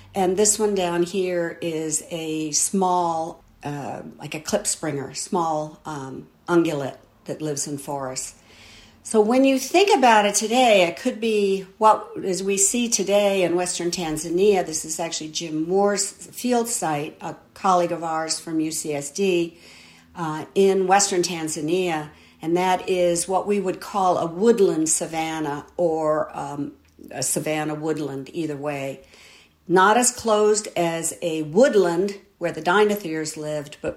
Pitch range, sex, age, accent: 155-205 Hz, female, 50-69, American